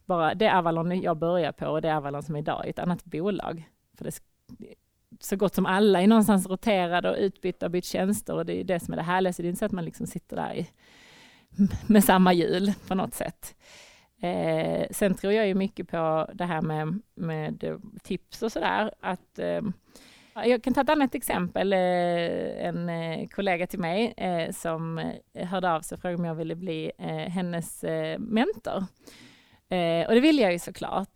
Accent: native